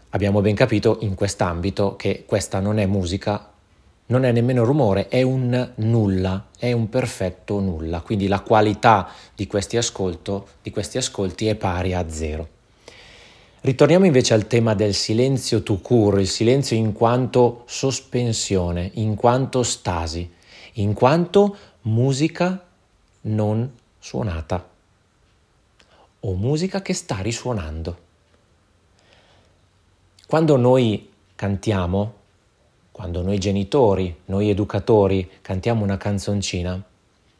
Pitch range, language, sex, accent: 95-125 Hz, Italian, male, native